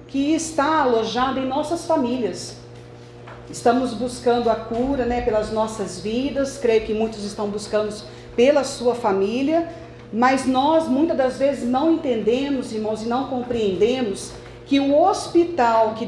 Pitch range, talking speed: 220-275 Hz, 140 wpm